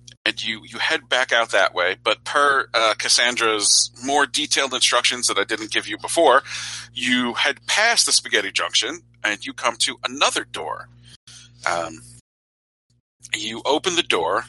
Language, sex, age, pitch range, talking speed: English, male, 40-59, 110-125 Hz, 155 wpm